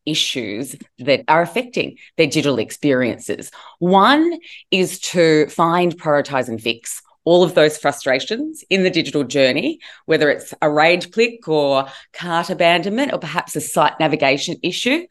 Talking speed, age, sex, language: 145 wpm, 20-39, female, English